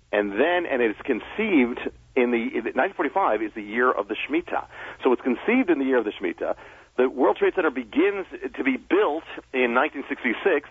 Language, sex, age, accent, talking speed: English, male, 50-69, American, 185 wpm